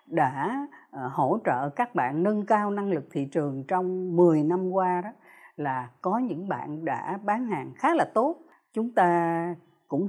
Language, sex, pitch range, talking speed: Vietnamese, female, 155-215 Hz, 170 wpm